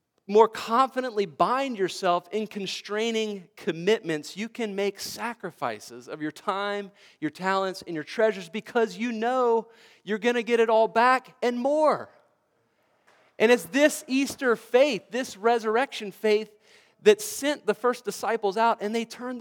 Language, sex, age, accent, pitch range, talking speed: English, male, 40-59, American, 145-220 Hz, 150 wpm